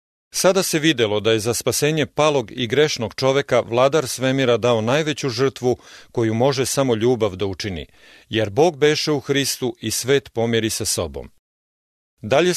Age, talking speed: 40-59, 160 wpm